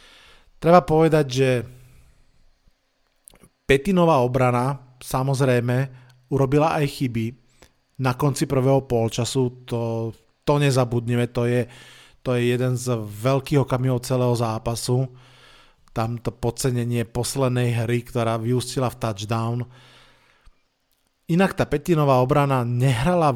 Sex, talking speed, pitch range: male, 100 wpm, 120-140 Hz